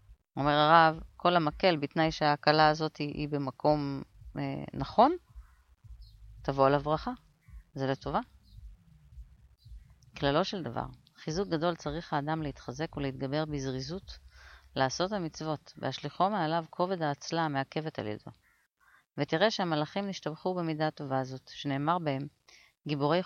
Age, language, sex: 30-49, Hebrew, female